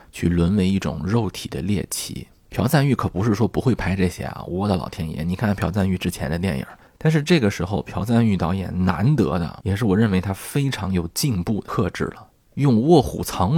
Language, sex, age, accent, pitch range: Chinese, male, 20-39, native, 85-110 Hz